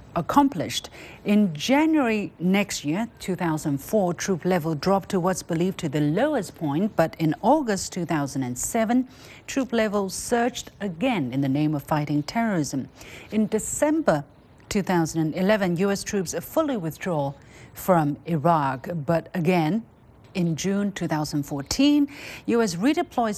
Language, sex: English, female